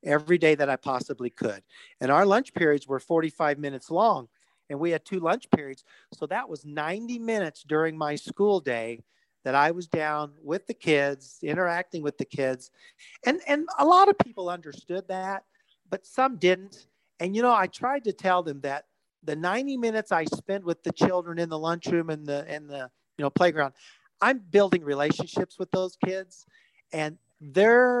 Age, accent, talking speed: 50-69, American, 185 wpm